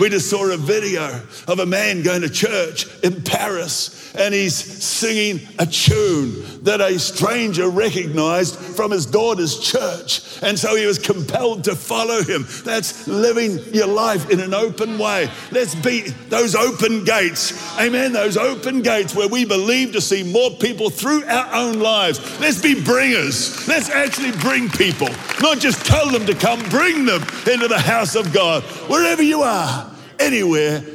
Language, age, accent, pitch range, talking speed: Swedish, 50-69, British, 145-215 Hz, 165 wpm